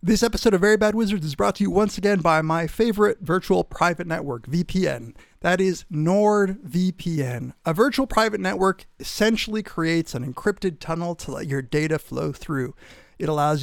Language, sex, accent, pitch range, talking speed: English, male, American, 145-195 Hz, 170 wpm